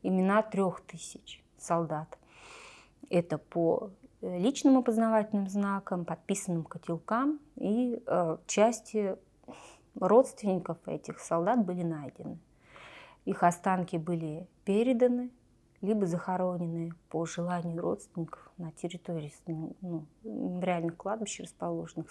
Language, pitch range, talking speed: Russian, 170-200 Hz, 90 wpm